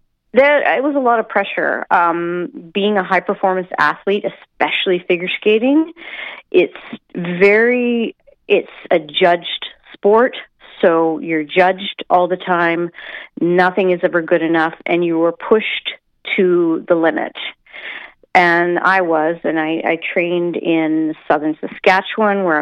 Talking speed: 130 wpm